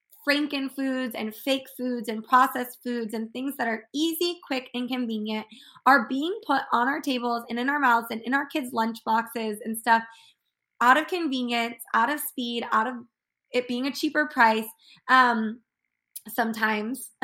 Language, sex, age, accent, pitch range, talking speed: English, female, 20-39, American, 230-280 Hz, 165 wpm